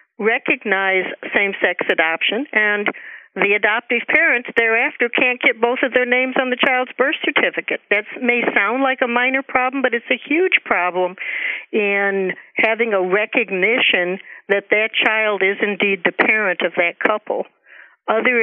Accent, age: American, 60-79